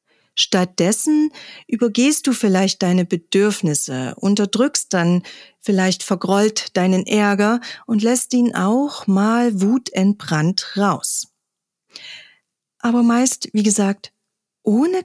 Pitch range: 185-240 Hz